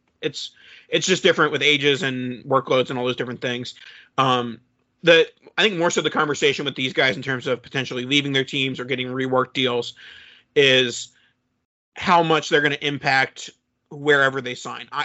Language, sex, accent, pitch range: English, male, American, 130-155 Hz